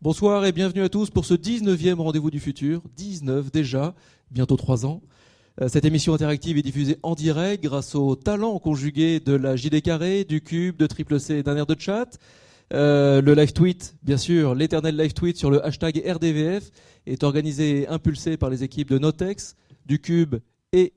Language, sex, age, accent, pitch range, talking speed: French, male, 30-49, French, 140-170 Hz, 190 wpm